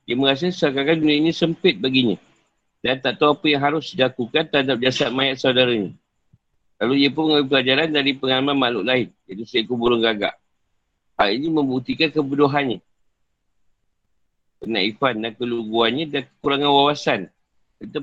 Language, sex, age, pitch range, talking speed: Malay, male, 50-69, 115-145 Hz, 140 wpm